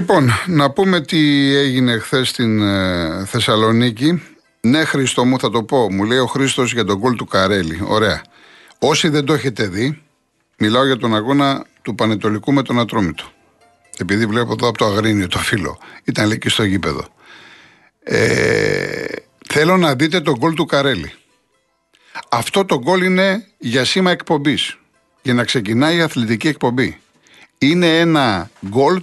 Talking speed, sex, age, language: 155 wpm, male, 50-69, Greek